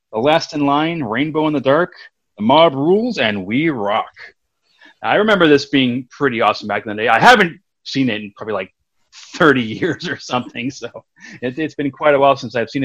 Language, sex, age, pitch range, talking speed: English, male, 30-49, 110-150 Hz, 210 wpm